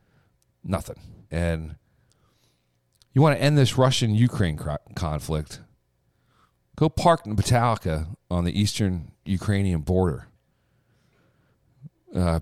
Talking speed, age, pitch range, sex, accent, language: 95 wpm, 40-59, 85-120 Hz, male, American, English